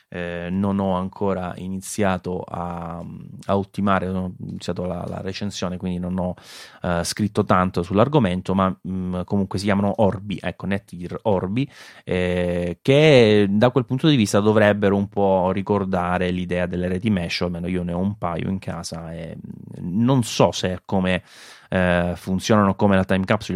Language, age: Italian, 20-39